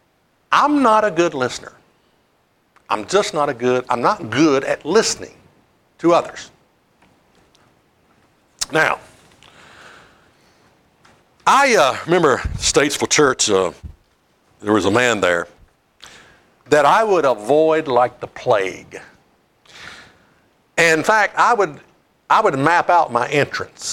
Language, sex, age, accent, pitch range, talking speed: English, male, 60-79, American, 125-205 Hz, 115 wpm